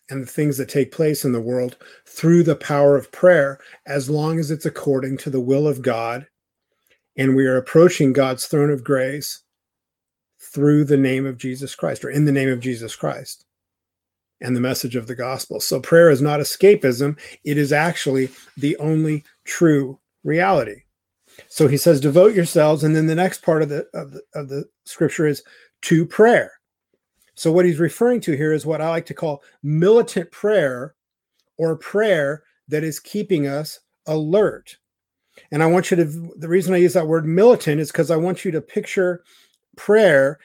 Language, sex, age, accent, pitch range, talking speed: English, male, 40-59, American, 140-175 Hz, 180 wpm